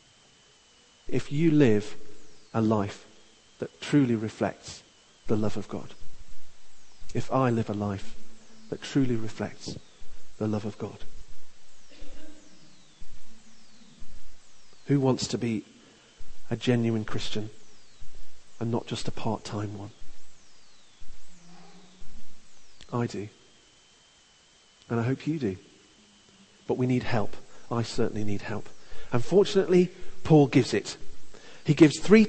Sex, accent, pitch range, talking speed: male, British, 110-170 Hz, 110 wpm